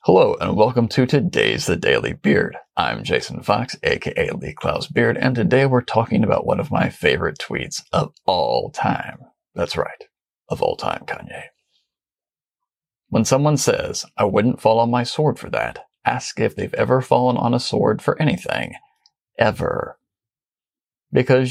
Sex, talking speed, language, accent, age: male, 160 wpm, English, American, 40-59